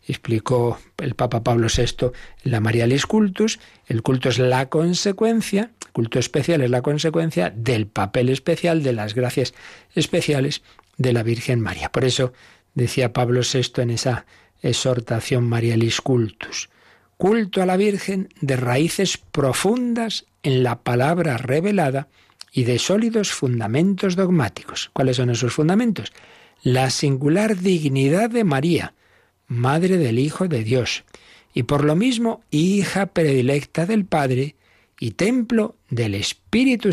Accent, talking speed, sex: Spanish, 135 wpm, male